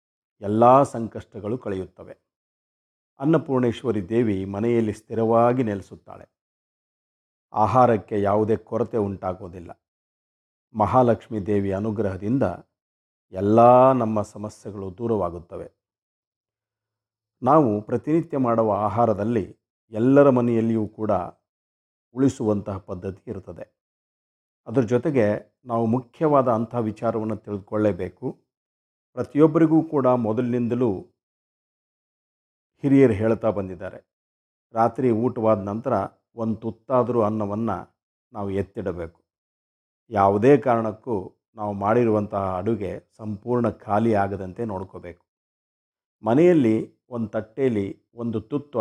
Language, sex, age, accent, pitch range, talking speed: Kannada, male, 50-69, native, 100-120 Hz, 80 wpm